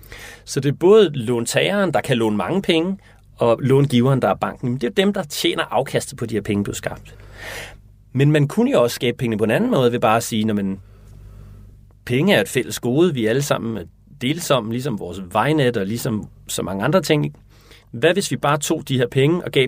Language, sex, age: Danish, male, 30-49